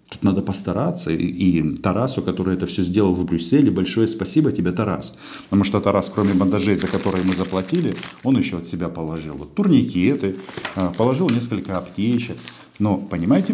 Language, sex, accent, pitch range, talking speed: Russian, male, native, 90-115 Hz, 155 wpm